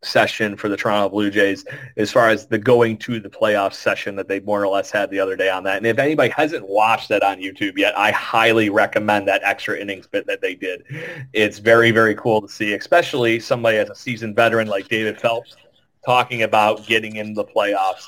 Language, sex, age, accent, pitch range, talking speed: English, male, 30-49, American, 105-135 Hz, 220 wpm